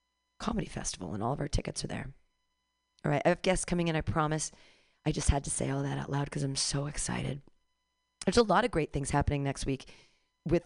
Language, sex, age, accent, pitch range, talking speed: English, female, 40-59, American, 130-170 Hz, 230 wpm